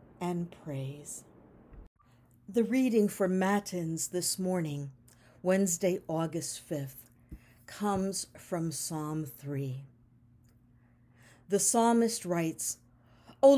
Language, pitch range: English, 130-210 Hz